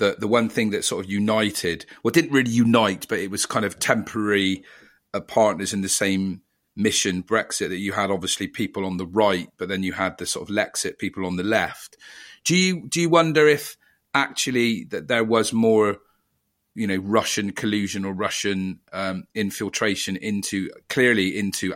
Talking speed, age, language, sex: 185 wpm, 40-59, English, male